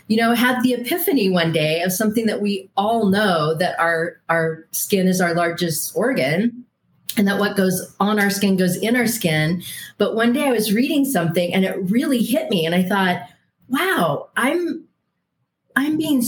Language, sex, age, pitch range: English, female, 40-59, 170-215 Hz